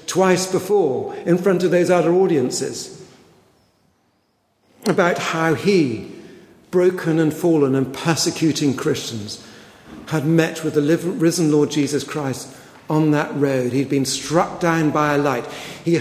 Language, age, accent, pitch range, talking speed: English, 60-79, British, 145-185 Hz, 135 wpm